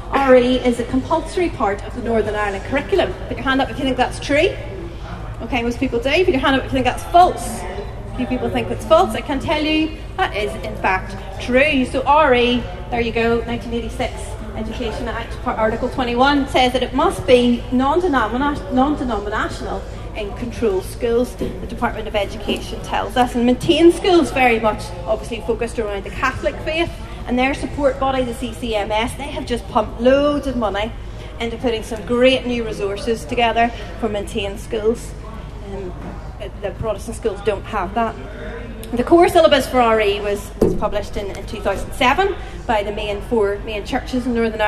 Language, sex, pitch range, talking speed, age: English, female, 225-270 Hz, 180 wpm, 30-49